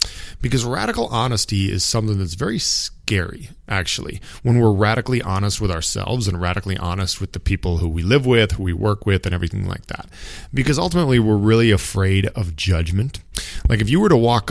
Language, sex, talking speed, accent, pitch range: English, male, 190 wpm, American, 90-115 Hz